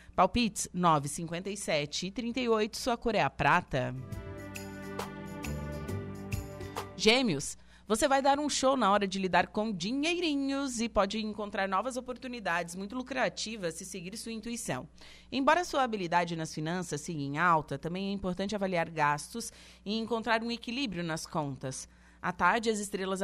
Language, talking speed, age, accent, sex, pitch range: Portuguese, 140 wpm, 30-49, Brazilian, female, 160-220 Hz